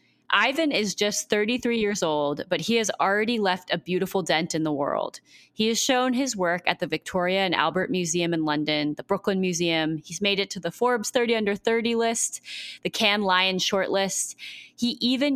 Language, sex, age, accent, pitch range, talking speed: English, female, 20-39, American, 160-210 Hz, 190 wpm